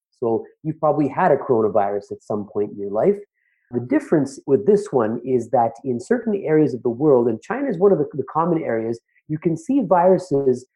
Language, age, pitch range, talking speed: English, 30-49, 115-185 Hz, 210 wpm